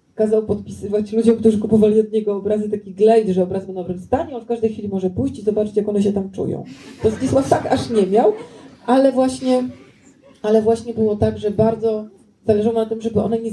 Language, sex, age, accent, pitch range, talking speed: Polish, female, 40-59, native, 190-225 Hz, 215 wpm